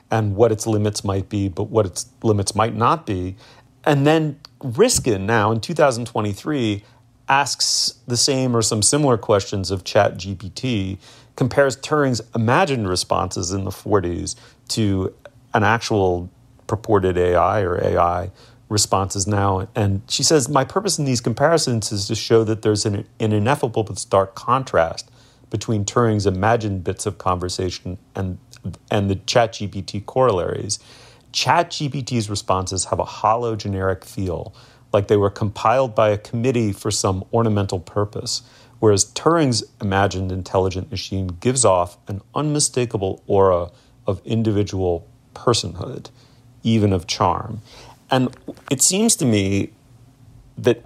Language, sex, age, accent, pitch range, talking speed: English, male, 40-59, American, 100-125 Hz, 135 wpm